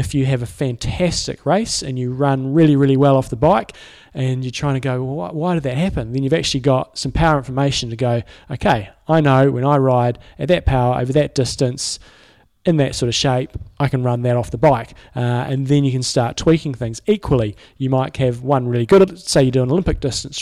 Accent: Australian